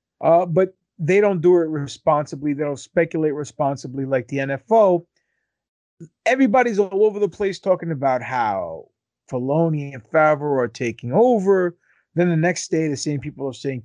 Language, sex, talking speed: English, male, 160 wpm